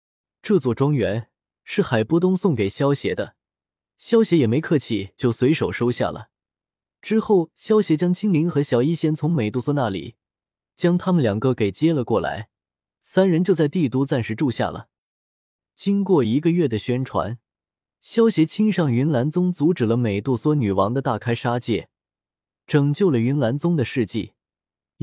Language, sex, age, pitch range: Chinese, male, 20-39, 115-170 Hz